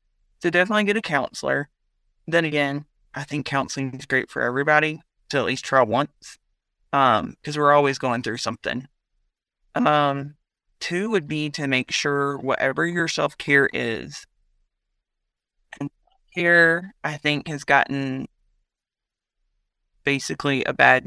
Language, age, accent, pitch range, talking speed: English, 30-49, American, 125-150 Hz, 135 wpm